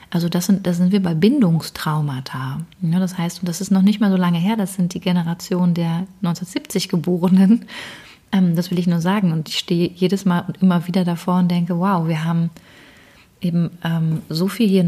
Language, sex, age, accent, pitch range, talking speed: German, female, 30-49, German, 175-200 Hz, 190 wpm